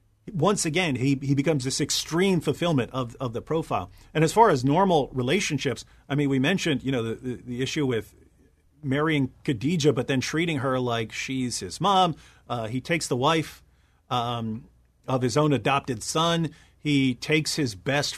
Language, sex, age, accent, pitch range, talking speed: English, male, 40-59, American, 120-150 Hz, 175 wpm